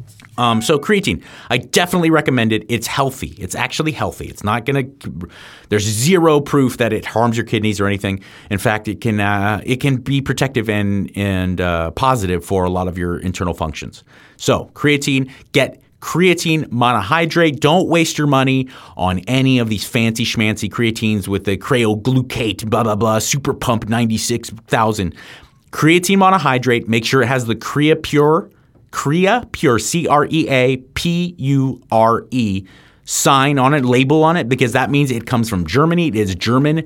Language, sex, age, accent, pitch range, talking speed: English, male, 30-49, American, 105-145 Hz, 160 wpm